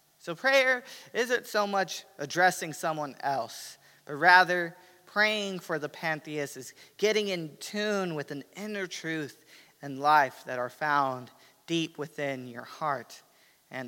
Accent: American